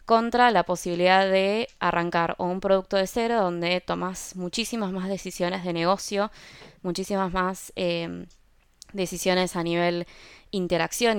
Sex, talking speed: female, 125 wpm